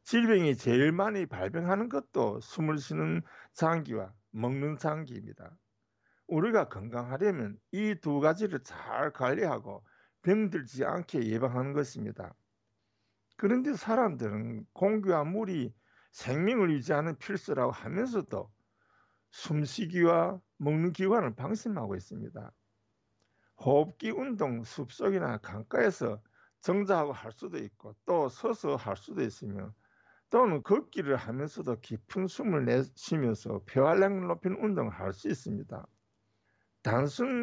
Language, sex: Korean, male